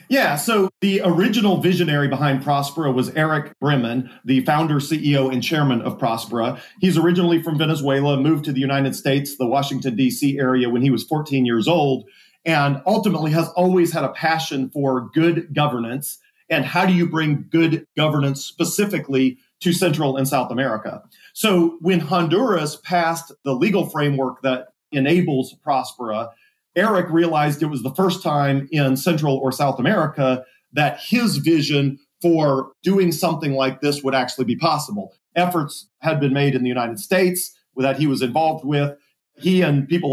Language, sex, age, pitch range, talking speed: English, male, 40-59, 135-175 Hz, 165 wpm